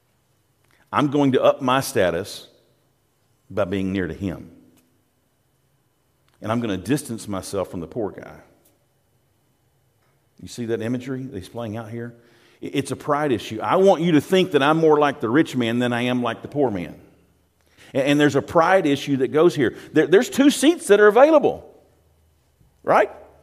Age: 50-69